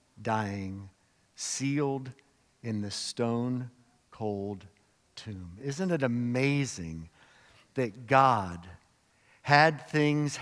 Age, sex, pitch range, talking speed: 50-69, male, 115-150 Hz, 80 wpm